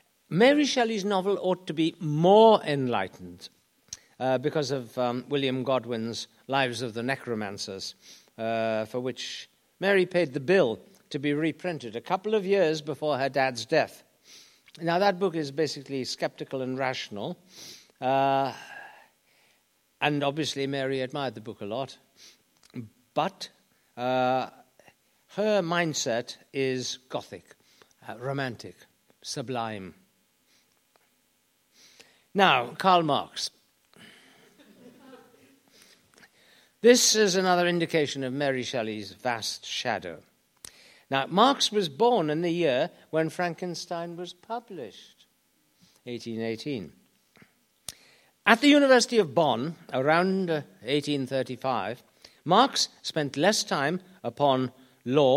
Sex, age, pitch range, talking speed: male, 60-79, 130-180 Hz, 105 wpm